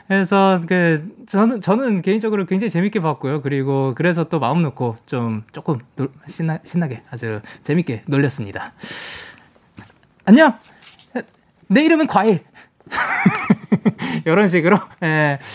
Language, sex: Korean, male